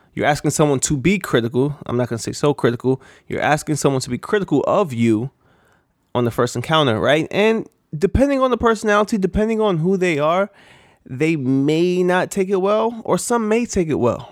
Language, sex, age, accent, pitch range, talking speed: English, male, 20-39, American, 130-180 Hz, 200 wpm